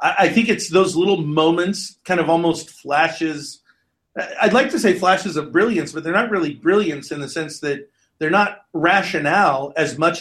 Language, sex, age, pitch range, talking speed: English, male, 40-59, 140-175 Hz, 180 wpm